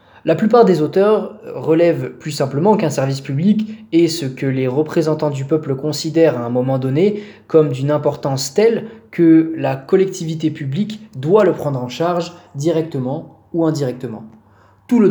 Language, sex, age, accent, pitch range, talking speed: French, male, 20-39, French, 130-170 Hz, 160 wpm